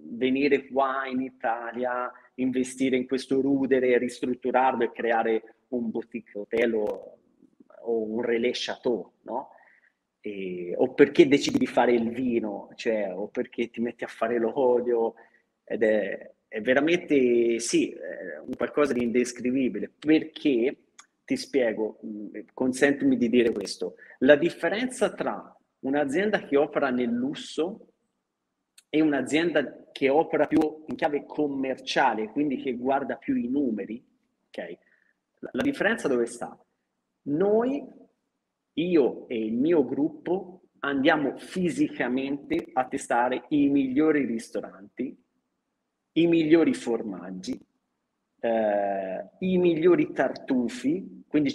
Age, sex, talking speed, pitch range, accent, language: 30-49, male, 115 wpm, 120-170 Hz, native, Italian